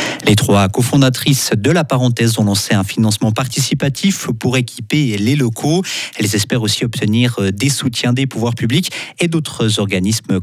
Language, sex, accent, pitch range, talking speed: French, male, French, 110-140 Hz, 155 wpm